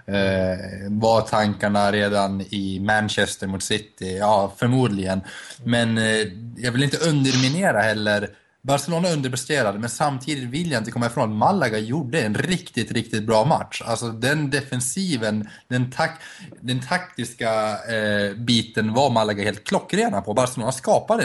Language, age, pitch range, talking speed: Swedish, 20-39, 105-130 Hz, 130 wpm